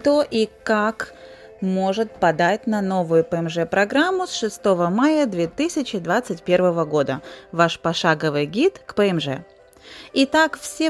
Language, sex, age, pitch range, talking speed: Russian, female, 30-49, 170-250 Hz, 110 wpm